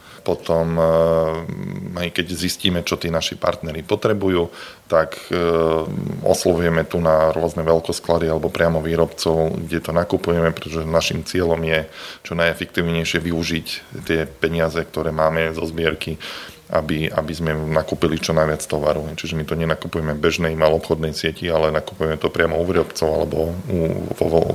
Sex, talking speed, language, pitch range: male, 145 wpm, Slovak, 80-85 Hz